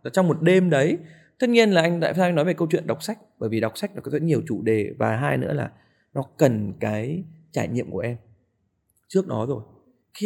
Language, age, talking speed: Vietnamese, 20-39, 230 wpm